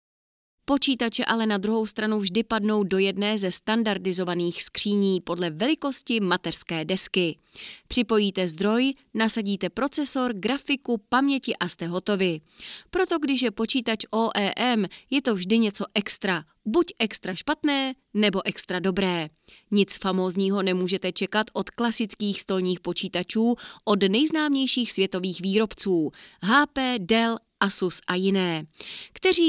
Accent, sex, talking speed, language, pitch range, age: native, female, 120 wpm, Czech, 185-240 Hz, 30-49